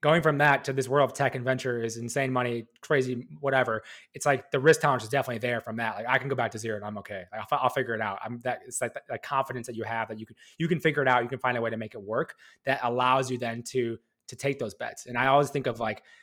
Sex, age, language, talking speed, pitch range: male, 20-39, English, 305 wpm, 120-145 Hz